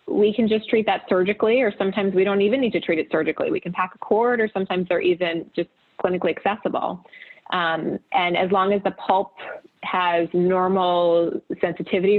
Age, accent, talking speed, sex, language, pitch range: 20-39, American, 185 wpm, female, English, 170-200 Hz